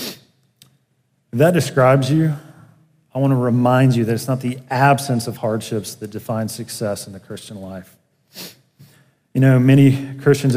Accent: American